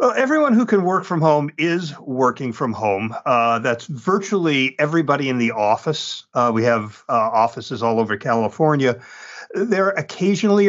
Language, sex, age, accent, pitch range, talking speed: English, male, 50-69, American, 115-160 Hz, 155 wpm